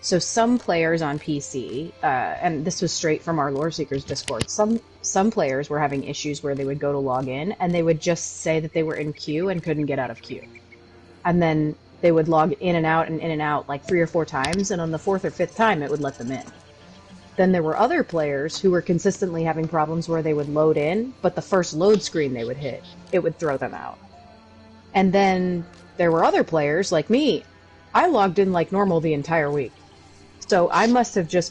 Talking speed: 230 wpm